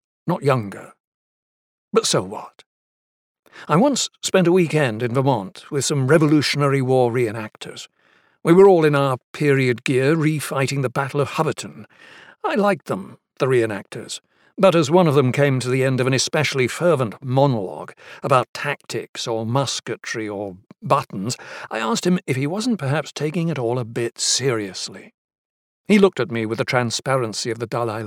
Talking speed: 165 wpm